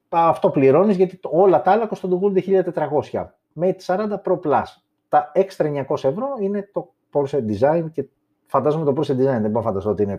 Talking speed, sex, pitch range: 185 wpm, male, 115-170 Hz